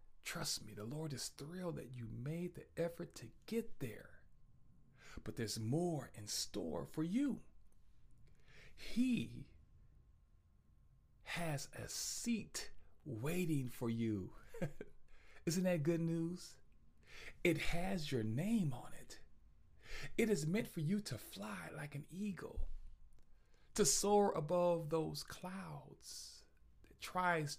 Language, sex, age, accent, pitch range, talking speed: English, male, 40-59, American, 120-185 Hz, 120 wpm